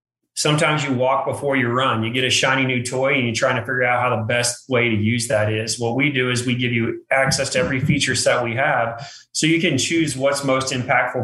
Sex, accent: male, American